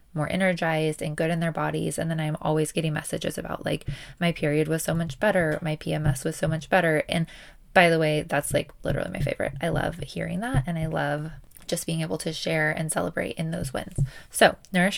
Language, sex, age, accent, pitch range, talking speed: English, female, 20-39, American, 155-185 Hz, 220 wpm